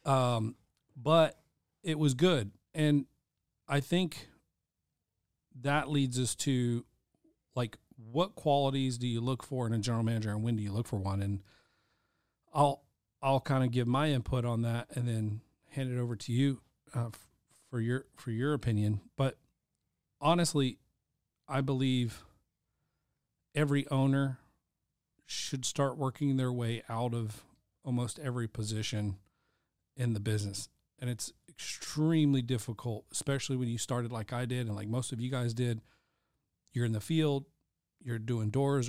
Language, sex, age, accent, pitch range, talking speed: English, male, 40-59, American, 115-135 Hz, 150 wpm